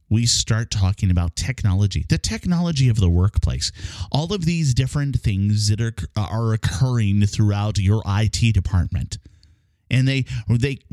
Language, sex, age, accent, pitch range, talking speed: English, male, 30-49, American, 95-145 Hz, 145 wpm